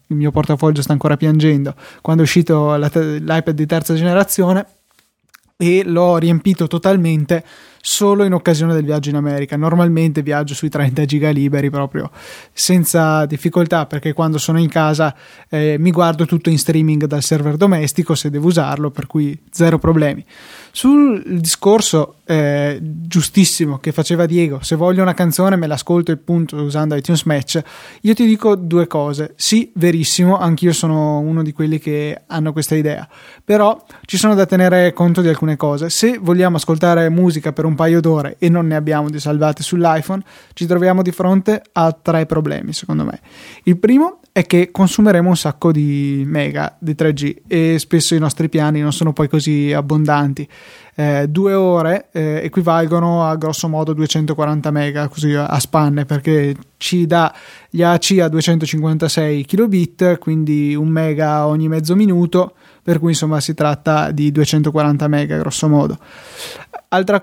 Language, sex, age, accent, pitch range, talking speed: Italian, male, 20-39, native, 150-175 Hz, 160 wpm